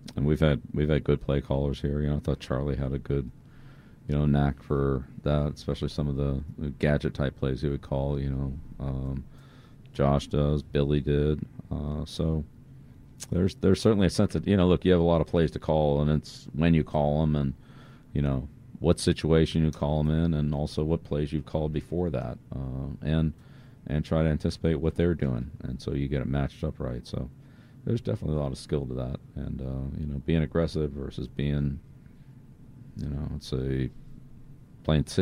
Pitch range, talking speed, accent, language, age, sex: 70-80 Hz, 205 wpm, American, English, 40-59, male